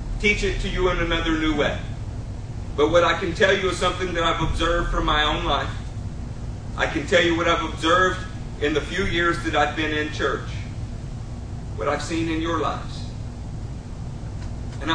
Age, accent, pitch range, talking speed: 40-59, American, 110-145 Hz, 185 wpm